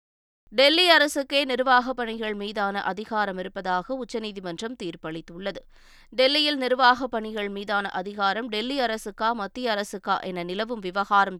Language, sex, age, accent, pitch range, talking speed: Tamil, female, 20-39, native, 200-260 Hz, 110 wpm